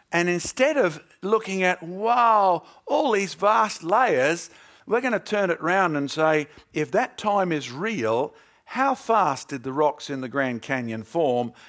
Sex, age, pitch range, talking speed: male, 50-69, 150-195 Hz, 170 wpm